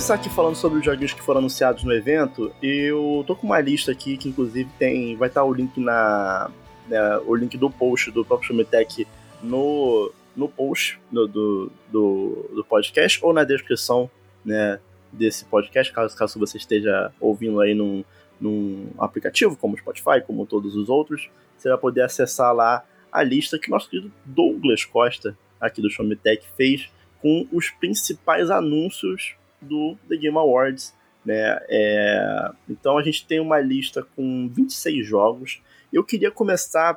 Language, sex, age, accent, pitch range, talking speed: Portuguese, male, 20-39, Brazilian, 110-160 Hz, 160 wpm